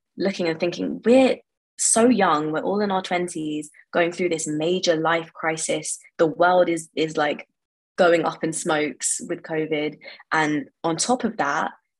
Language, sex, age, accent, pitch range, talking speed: English, female, 20-39, British, 155-180 Hz, 165 wpm